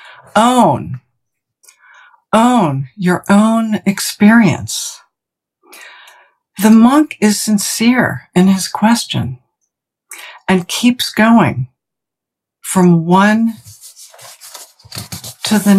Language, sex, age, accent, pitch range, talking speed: English, female, 60-79, American, 165-235 Hz, 70 wpm